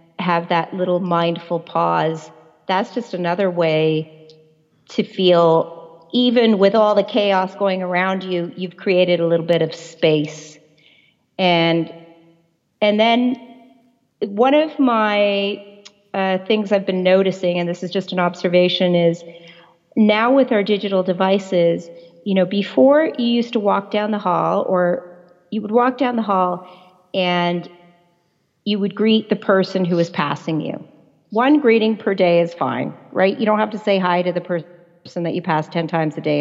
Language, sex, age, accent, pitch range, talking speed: English, female, 40-59, American, 170-205 Hz, 165 wpm